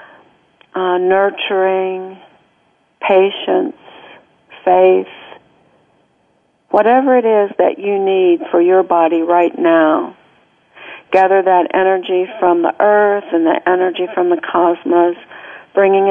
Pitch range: 175-195 Hz